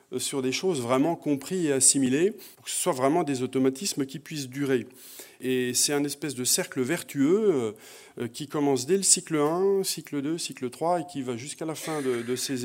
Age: 40-59